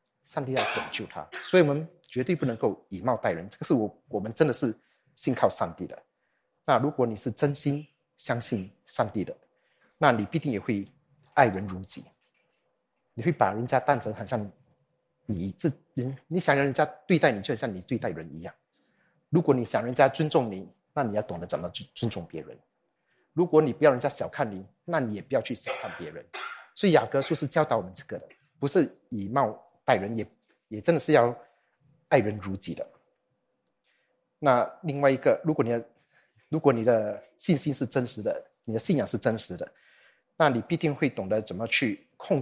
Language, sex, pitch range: Chinese, male, 115-155 Hz